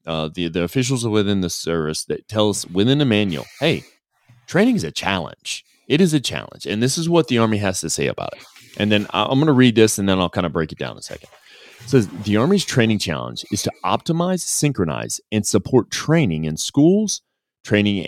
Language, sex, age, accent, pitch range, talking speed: English, male, 30-49, American, 90-130 Hz, 220 wpm